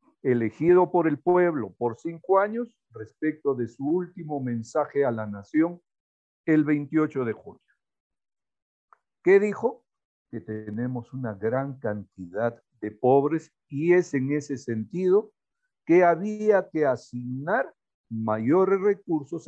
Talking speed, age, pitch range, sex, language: 120 wpm, 50-69, 120-175 Hz, male, Spanish